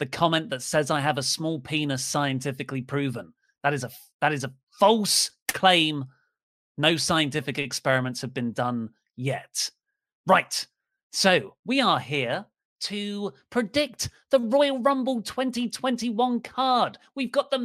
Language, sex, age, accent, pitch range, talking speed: English, male, 30-49, British, 140-225 Hz, 140 wpm